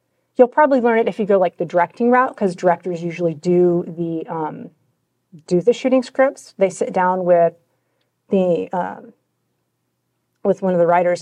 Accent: American